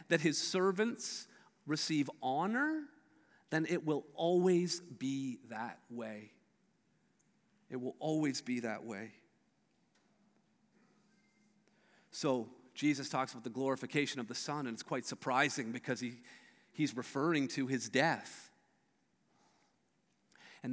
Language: English